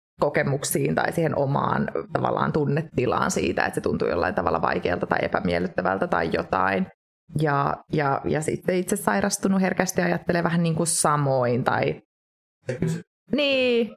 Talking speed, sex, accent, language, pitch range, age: 135 wpm, female, native, Finnish, 145-170 Hz, 20-39